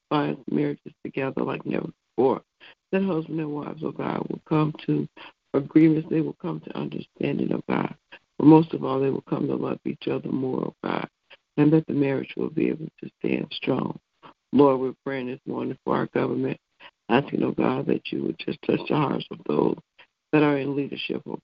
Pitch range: 135-155 Hz